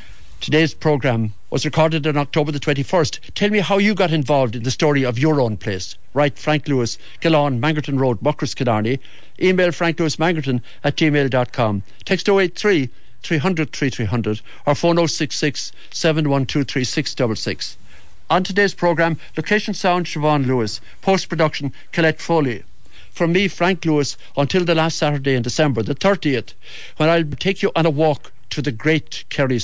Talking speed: 150 wpm